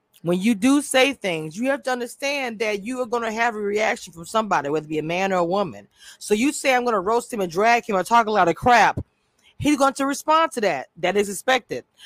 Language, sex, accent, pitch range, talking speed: English, female, American, 205-265 Hz, 265 wpm